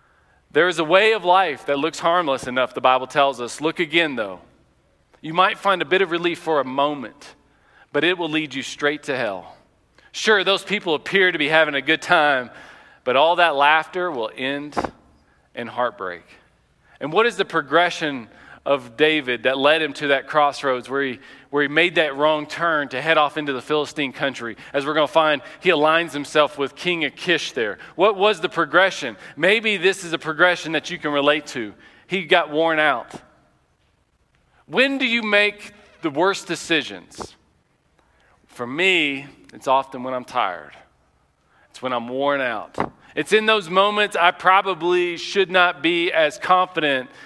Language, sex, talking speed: English, male, 180 wpm